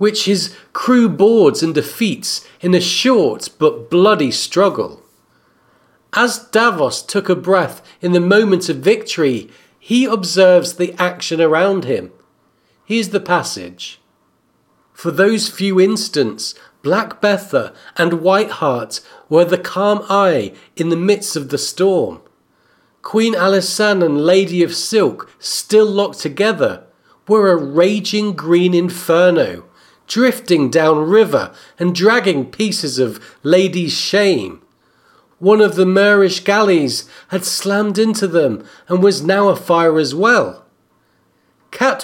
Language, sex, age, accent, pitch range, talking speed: English, male, 40-59, British, 170-210 Hz, 125 wpm